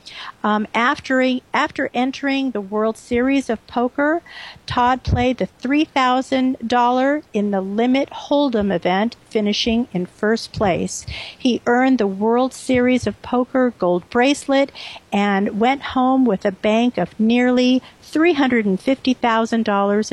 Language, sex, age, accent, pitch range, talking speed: English, female, 50-69, American, 205-260 Hz, 120 wpm